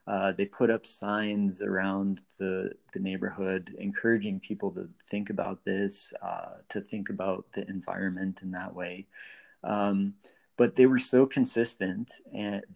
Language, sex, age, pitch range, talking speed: English, male, 30-49, 100-125 Hz, 145 wpm